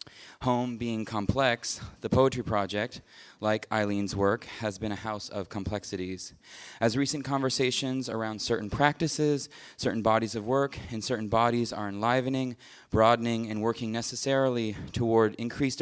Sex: male